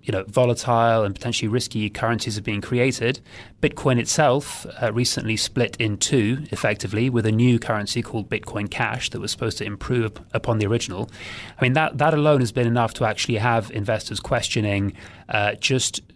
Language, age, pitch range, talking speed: English, 30-49, 105-125 Hz, 180 wpm